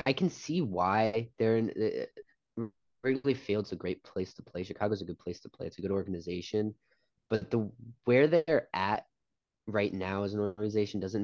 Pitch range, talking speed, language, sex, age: 95-115 Hz, 185 wpm, English, male, 20-39